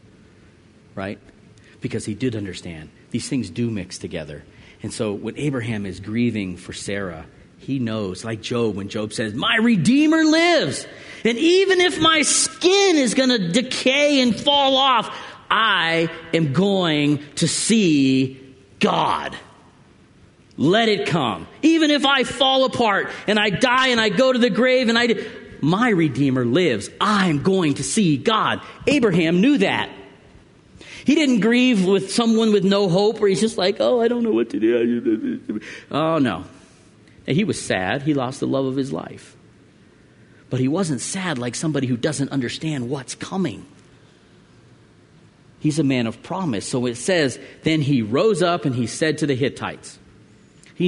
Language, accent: English, American